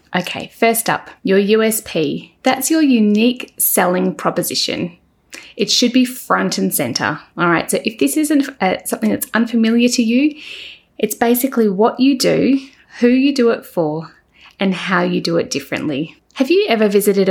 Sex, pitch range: female, 180-240 Hz